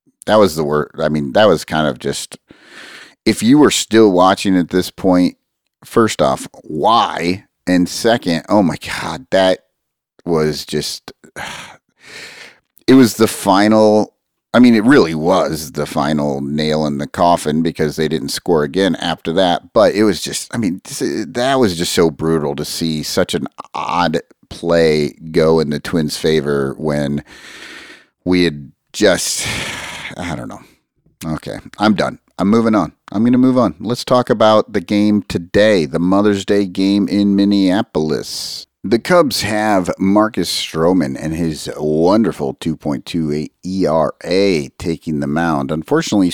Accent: American